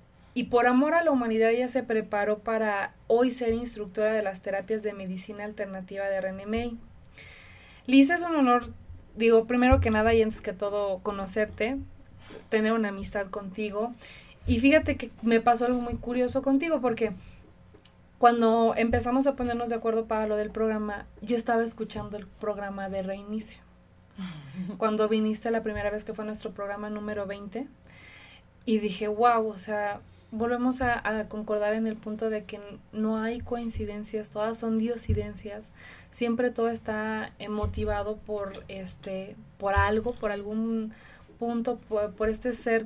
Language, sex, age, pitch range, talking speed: Spanish, female, 20-39, 205-235 Hz, 155 wpm